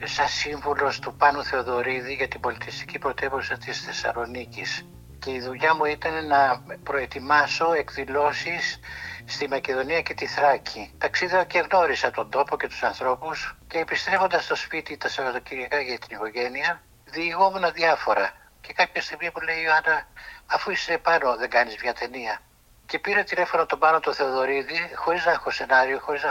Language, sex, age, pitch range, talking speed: Greek, male, 60-79, 130-170 Hz, 155 wpm